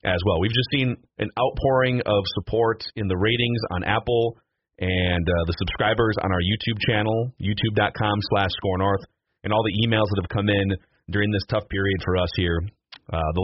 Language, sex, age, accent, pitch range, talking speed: English, male, 30-49, American, 100-135 Hz, 185 wpm